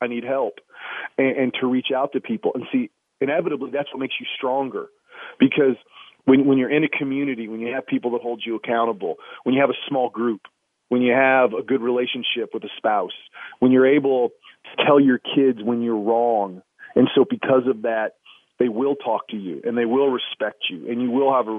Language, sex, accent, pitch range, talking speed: English, male, American, 120-140 Hz, 215 wpm